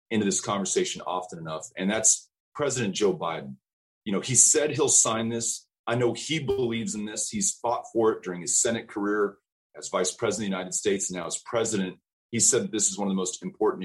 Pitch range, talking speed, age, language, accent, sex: 100-145 Hz, 225 wpm, 40-59, English, American, male